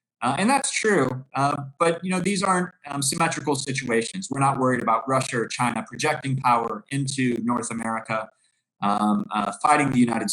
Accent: American